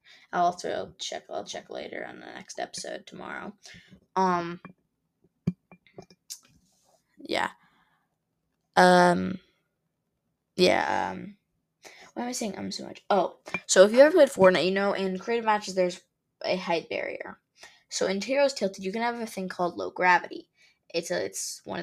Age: 10-29